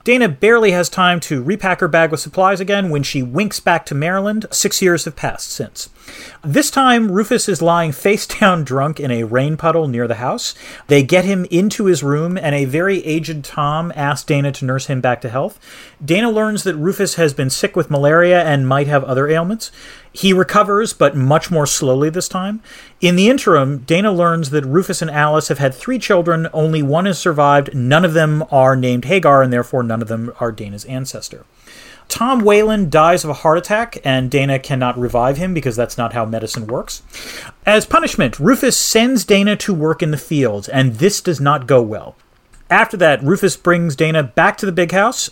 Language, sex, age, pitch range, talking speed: English, male, 40-59, 140-195 Hz, 200 wpm